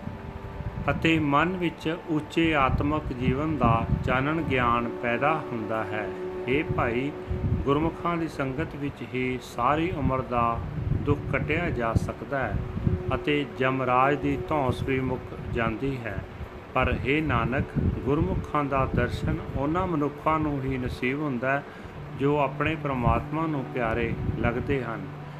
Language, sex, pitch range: Punjabi, male, 115-145 Hz